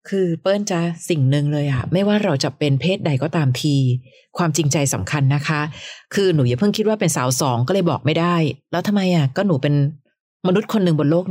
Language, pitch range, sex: Thai, 140-190 Hz, female